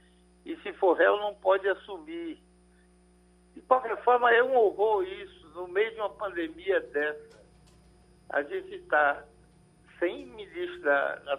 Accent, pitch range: Brazilian, 165-255 Hz